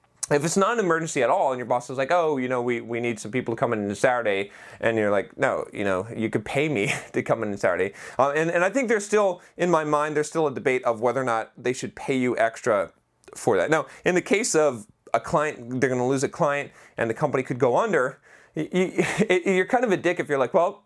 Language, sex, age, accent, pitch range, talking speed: English, male, 30-49, American, 120-165 Hz, 270 wpm